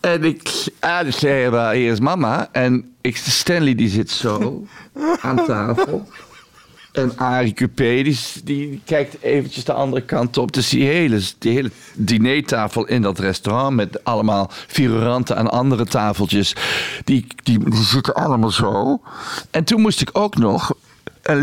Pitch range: 115-155 Hz